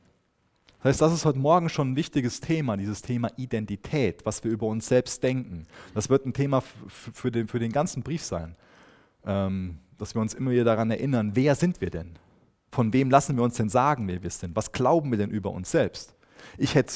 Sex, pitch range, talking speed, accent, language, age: male, 105-140 Hz, 210 wpm, German, German, 30-49